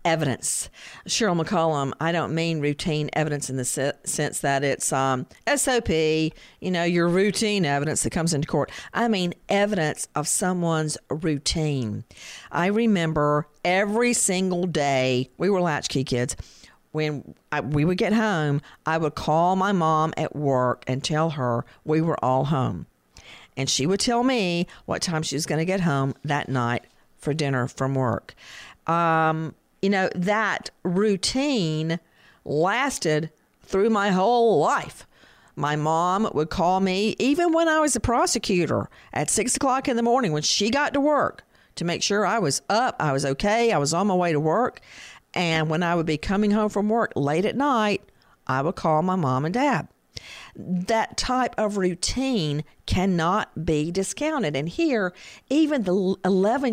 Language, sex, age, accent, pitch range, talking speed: English, female, 50-69, American, 150-205 Hz, 165 wpm